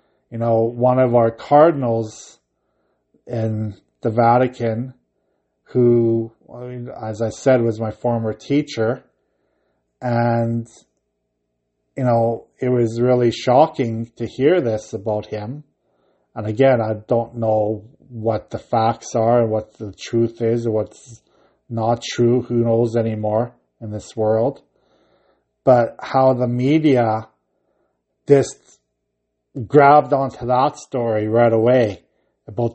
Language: English